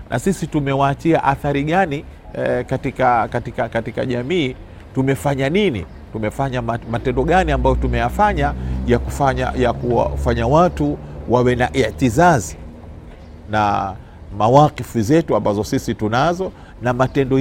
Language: Swahili